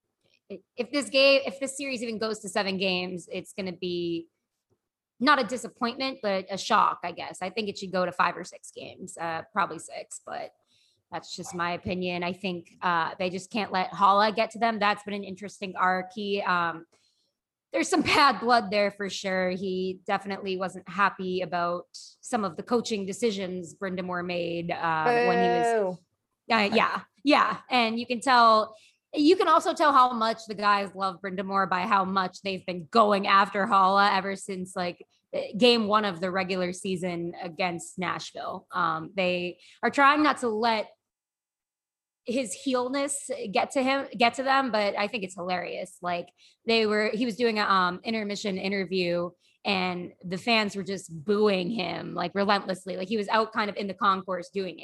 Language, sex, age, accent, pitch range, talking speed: English, female, 20-39, American, 185-225 Hz, 180 wpm